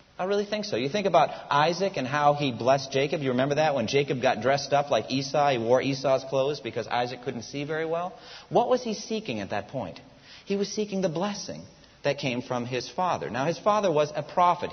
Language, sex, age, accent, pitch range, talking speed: English, male, 40-59, American, 125-165 Hz, 230 wpm